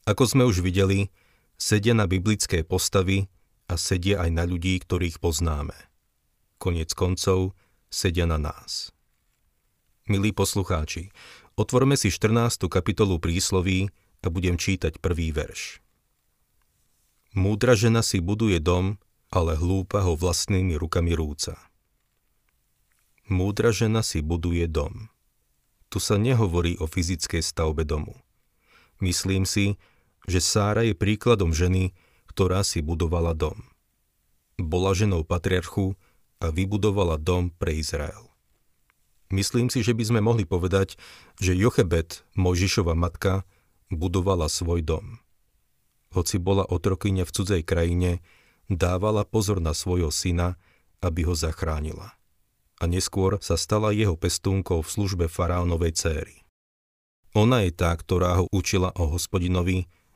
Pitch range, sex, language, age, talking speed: 85-100 Hz, male, Slovak, 40-59, 120 wpm